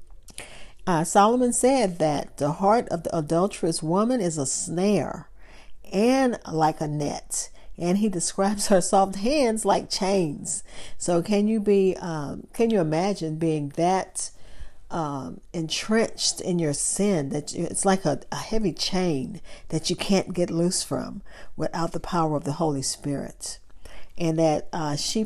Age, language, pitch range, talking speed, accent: 50-69, English, 160-205 Hz, 155 wpm, American